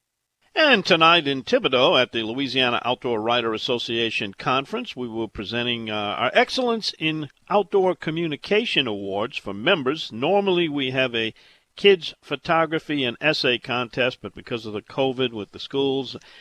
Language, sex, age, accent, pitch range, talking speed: English, male, 50-69, American, 120-160 Hz, 145 wpm